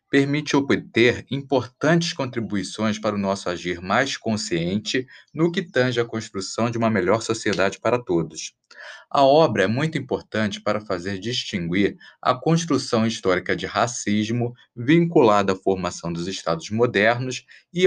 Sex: male